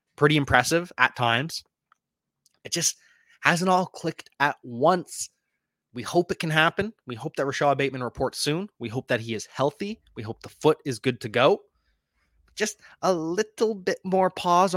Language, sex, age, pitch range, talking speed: English, male, 20-39, 140-185 Hz, 175 wpm